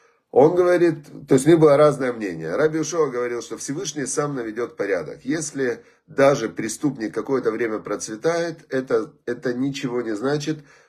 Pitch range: 115-155 Hz